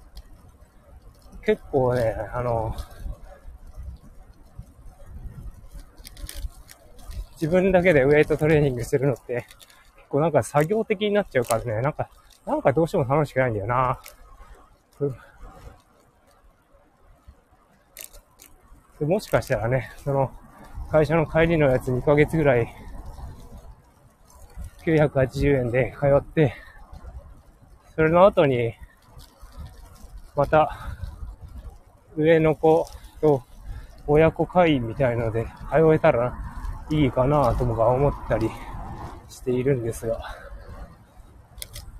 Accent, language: native, Japanese